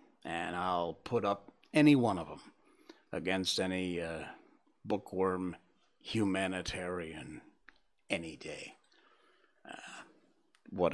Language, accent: English, American